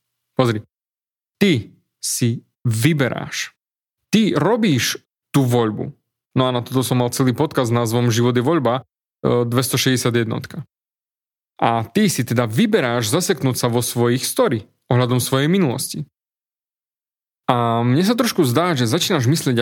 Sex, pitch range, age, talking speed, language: male, 120-155 Hz, 30-49, 130 wpm, Slovak